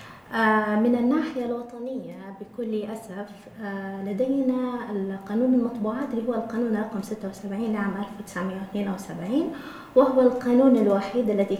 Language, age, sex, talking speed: Arabic, 20-39, female, 95 wpm